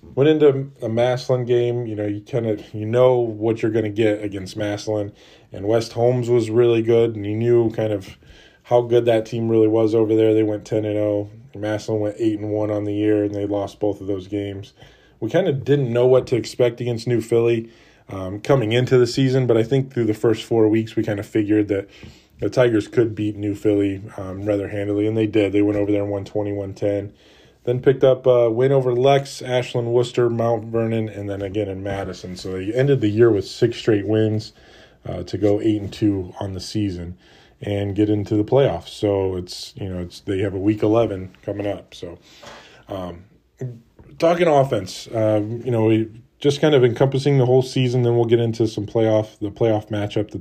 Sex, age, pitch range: male, 20-39, 105-120 Hz